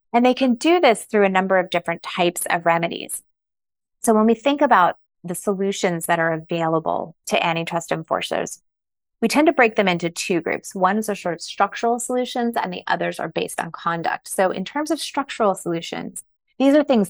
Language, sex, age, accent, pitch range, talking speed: English, female, 20-39, American, 165-205 Hz, 195 wpm